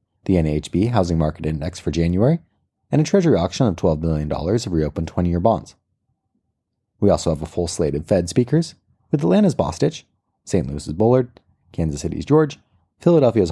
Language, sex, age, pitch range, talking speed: English, male, 30-49, 80-125 Hz, 170 wpm